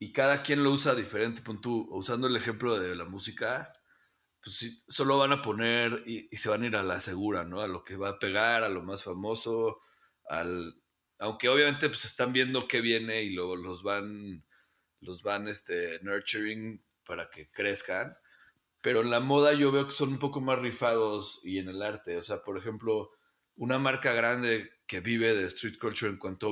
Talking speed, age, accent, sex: 200 wpm, 40-59, Mexican, male